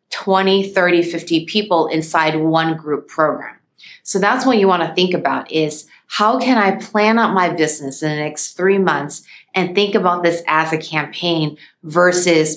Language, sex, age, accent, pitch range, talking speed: English, female, 30-49, American, 155-190 Hz, 170 wpm